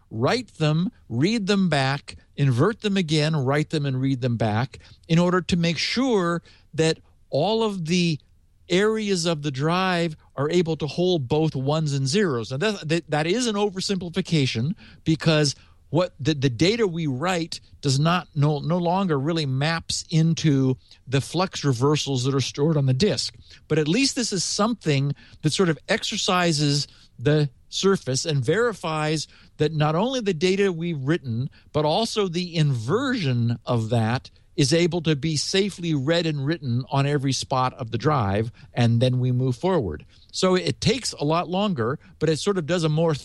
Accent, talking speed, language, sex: American, 170 wpm, English, male